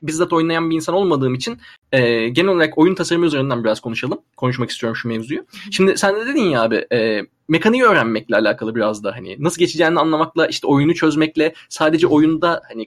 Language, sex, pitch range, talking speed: Turkish, male, 140-185 Hz, 185 wpm